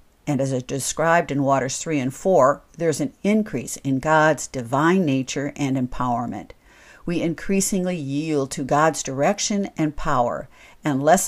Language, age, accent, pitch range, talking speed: English, 60-79, American, 140-175 Hz, 150 wpm